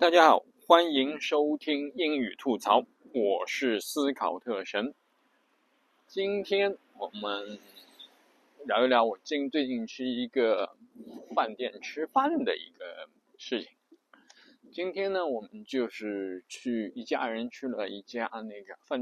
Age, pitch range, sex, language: 20-39, 125-195 Hz, male, Chinese